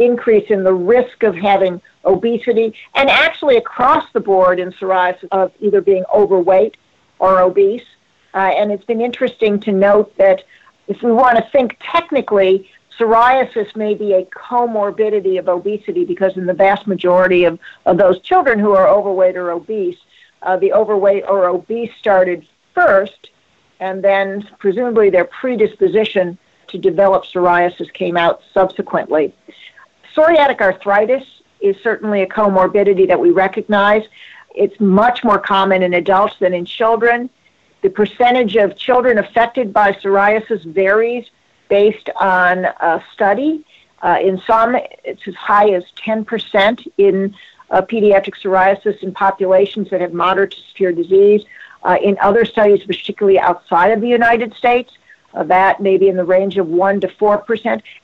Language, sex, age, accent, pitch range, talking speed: English, female, 50-69, American, 190-225 Hz, 150 wpm